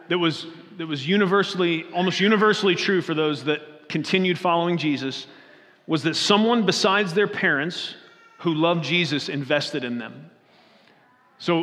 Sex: male